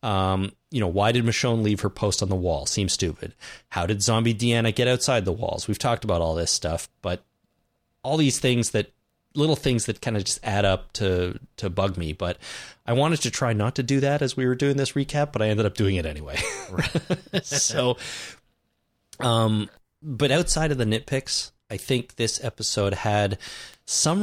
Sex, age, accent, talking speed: male, 30-49, American, 200 wpm